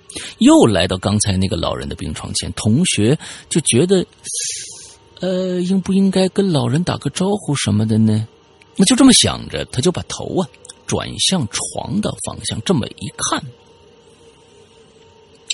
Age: 50-69